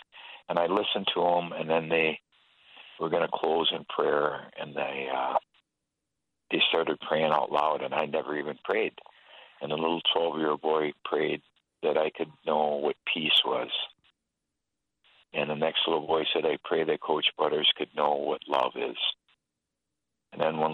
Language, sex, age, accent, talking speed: English, male, 60-79, American, 170 wpm